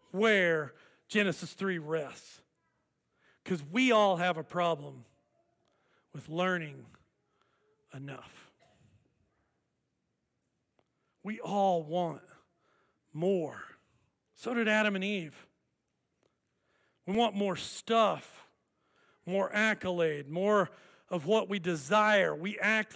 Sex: male